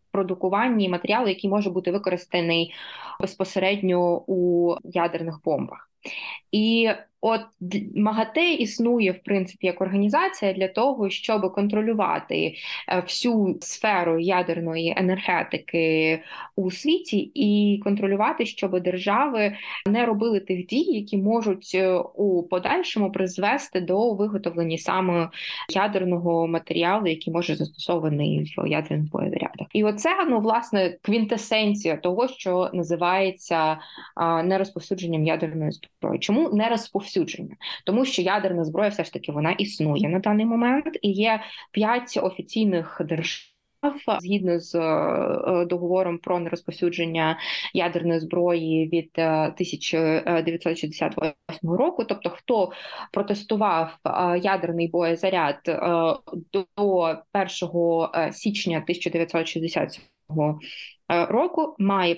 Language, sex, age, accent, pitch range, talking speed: Ukrainian, female, 20-39, native, 170-205 Hz, 100 wpm